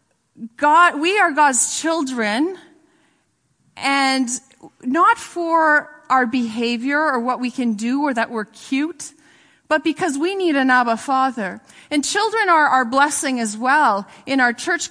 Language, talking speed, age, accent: English, 145 wpm, 40-59, American